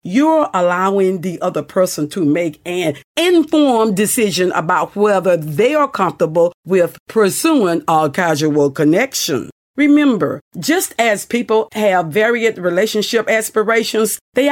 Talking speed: 120 wpm